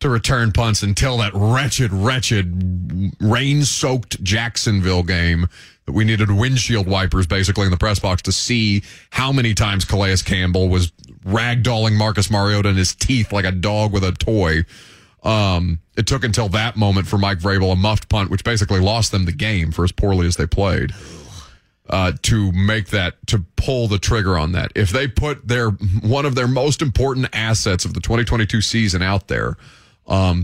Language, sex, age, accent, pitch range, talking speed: English, male, 30-49, American, 95-120 Hz, 180 wpm